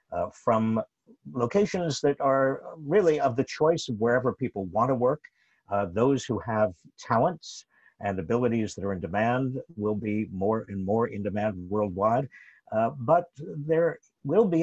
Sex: male